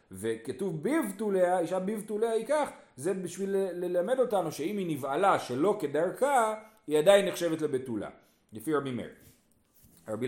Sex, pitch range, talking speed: male, 150-230 Hz, 140 wpm